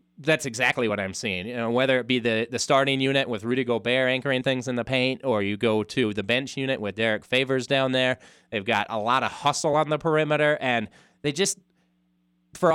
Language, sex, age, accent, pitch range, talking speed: English, male, 30-49, American, 115-140 Hz, 220 wpm